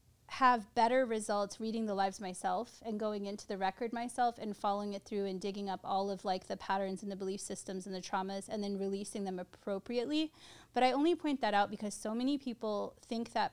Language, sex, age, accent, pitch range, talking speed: English, female, 20-39, American, 200-235 Hz, 215 wpm